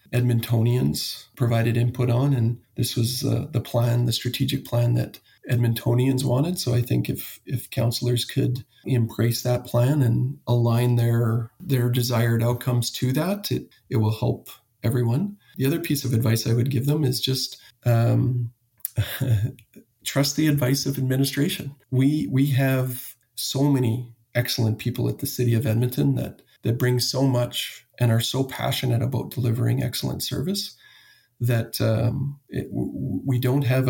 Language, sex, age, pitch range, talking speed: English, male, 40-59, 120-130 Hz, 155 wpm